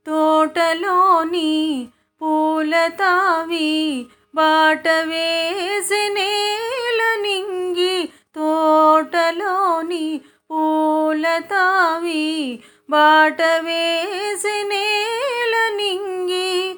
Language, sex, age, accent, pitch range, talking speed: Telugu, female, 30-49, native, 260-350 Hz, 45 wpm